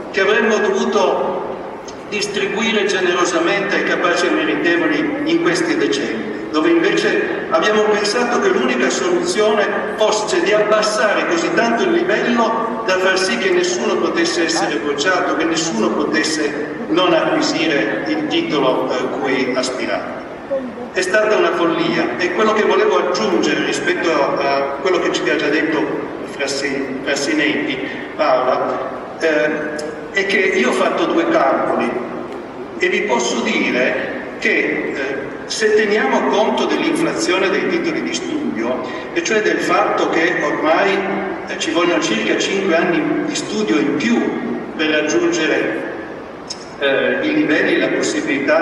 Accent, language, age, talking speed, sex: native, Italian, 50-69, 135 wpm, male